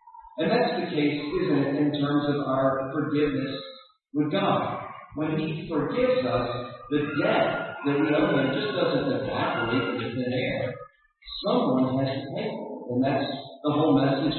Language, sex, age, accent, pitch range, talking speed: English, female, 10-29, American, 125-155 Hz, 165 wpm